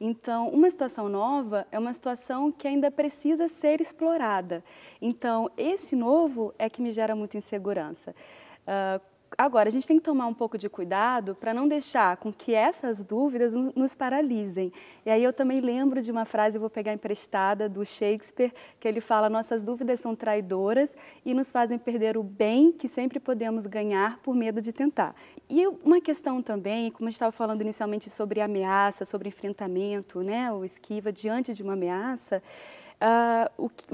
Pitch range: 215-270 Hz